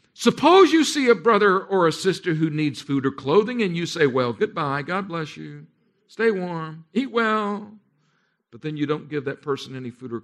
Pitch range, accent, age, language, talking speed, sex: 115-165 Hz, American, 50-69, English, 205 wpm, male